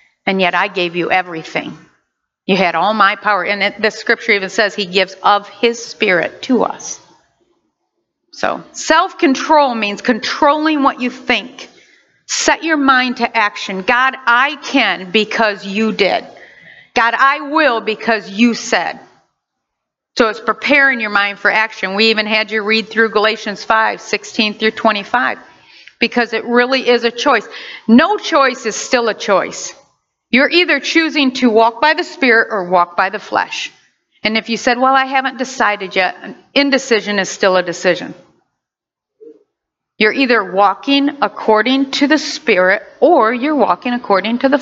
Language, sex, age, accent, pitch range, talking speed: English, female, 50-69, American, 210-275 Hz, 160 wpm